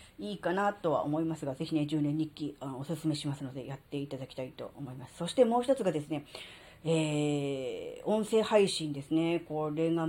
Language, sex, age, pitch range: Japanese, female, 40-59, 155-225 Hz